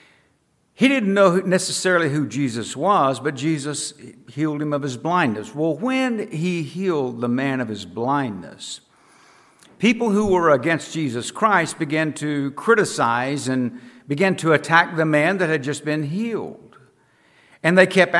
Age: 60-79